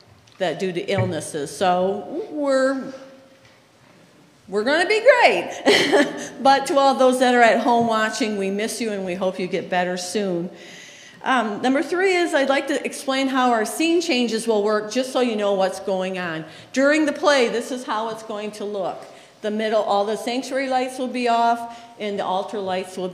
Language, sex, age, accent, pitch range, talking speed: English, female, 50-69, American, 200-275 Hz, 195 wpm